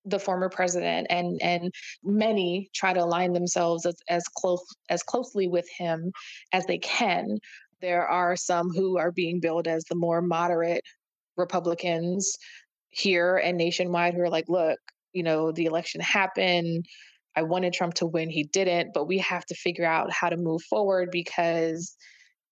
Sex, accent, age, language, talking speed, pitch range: female, American, 20-39, English, 165 wpm, 170-190 Hz